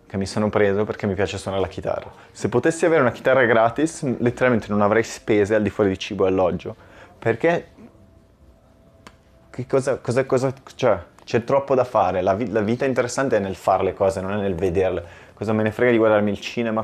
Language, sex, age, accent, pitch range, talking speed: Italian, male, 20-39, native, 100-125 Hz, 210 wpm